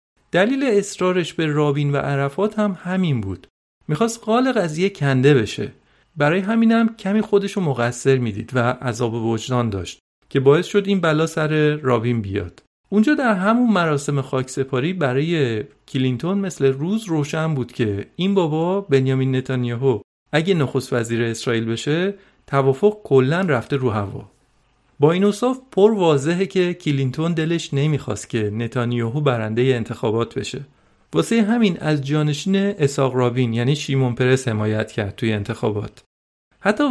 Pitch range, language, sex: 125-180 Hz, Persian, male